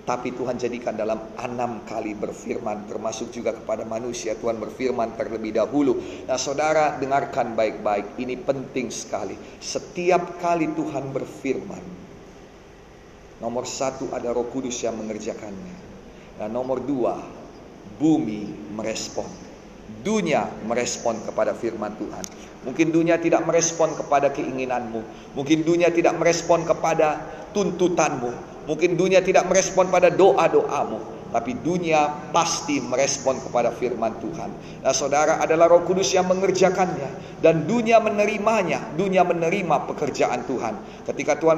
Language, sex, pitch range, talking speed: Indonesian, male, 135-180 Hz, 120 wpm